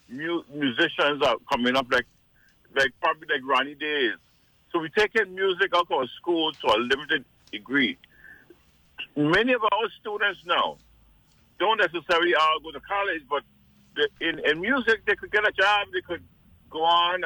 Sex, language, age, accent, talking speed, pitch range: male, English, 60-79, American, 165 wpm, 130-185 Hz